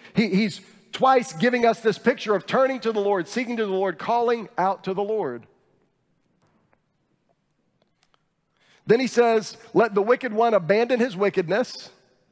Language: English